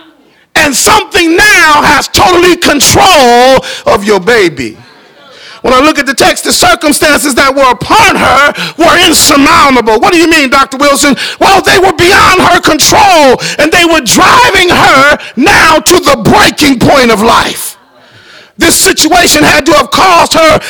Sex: male